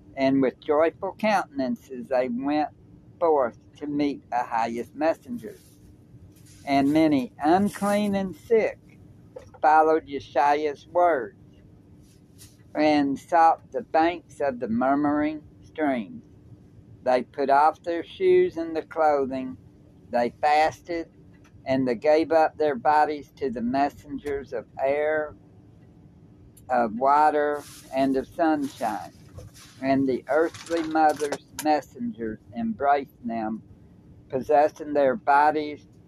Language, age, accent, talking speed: English, 60-79, American, 105 wpm